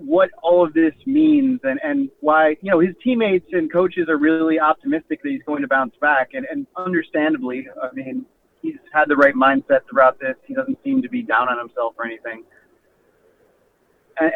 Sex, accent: male, American